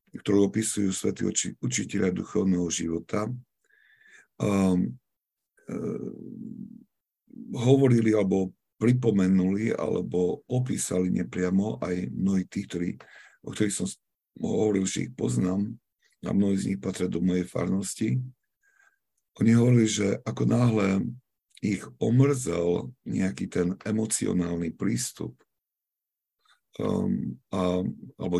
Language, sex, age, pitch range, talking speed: Slovak, male, 50-69, 90-115 Hz, 95 wpm